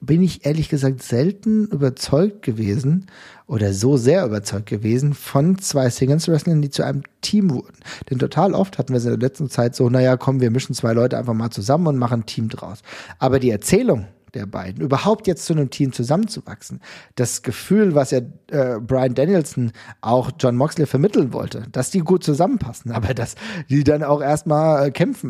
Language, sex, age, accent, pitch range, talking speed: German, male, 40-59, German, 125-155 Hz, 185 wpm